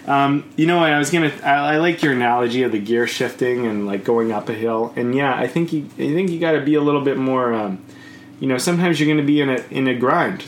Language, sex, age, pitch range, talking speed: English, male, 20-39, 125-160 Hz, 290 wpm